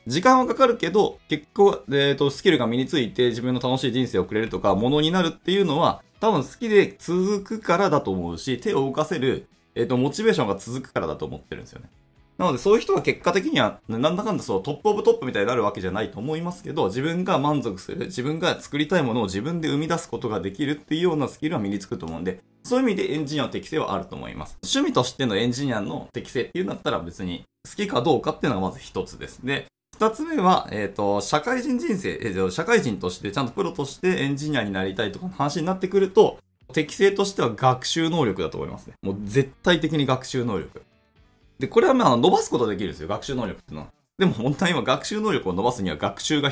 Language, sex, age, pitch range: Japanese, male, 20-39, 110-170 Hz